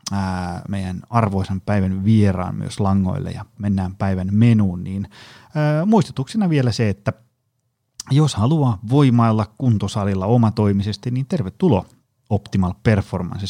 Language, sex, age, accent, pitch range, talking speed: Finnish, male, 30-49, native, 100-125 Hz, 105 wpm